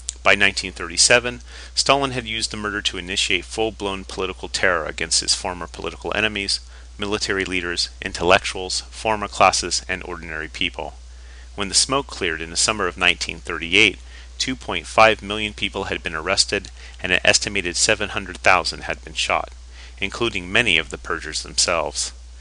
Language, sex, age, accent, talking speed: English, male, 30-49, American, 140 wpm